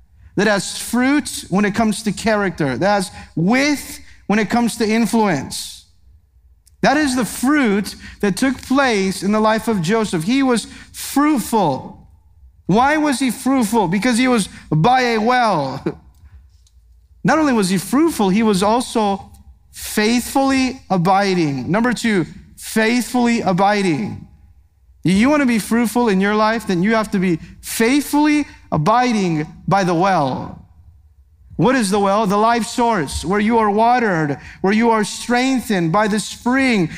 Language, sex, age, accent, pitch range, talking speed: English, male, 40-59, American, 170-235 Hz, 150 wpm